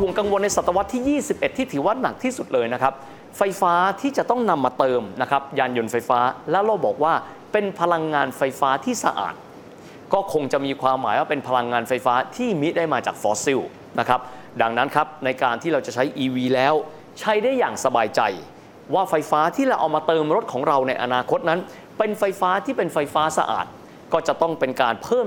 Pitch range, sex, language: 130-195 Hz, male, Thai